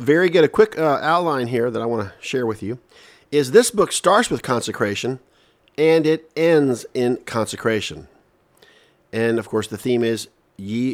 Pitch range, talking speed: 110-140 Hz, 175 wpm